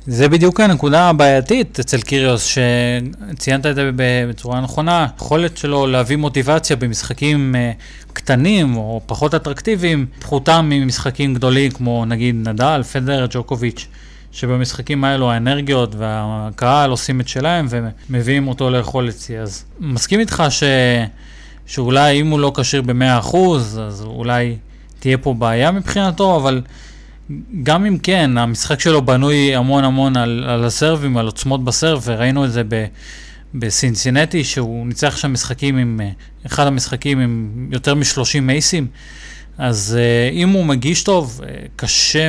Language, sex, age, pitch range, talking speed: Hebrew, male, 20-39, 120-145 Hz, 130 wpm